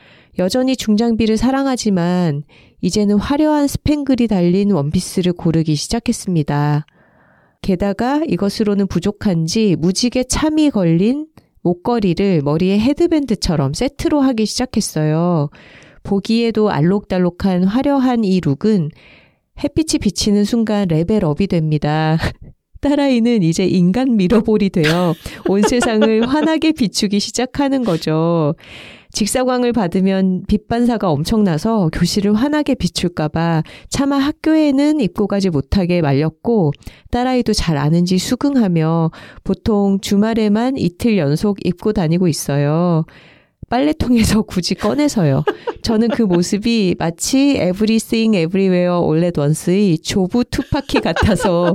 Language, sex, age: Korean, female, 40-59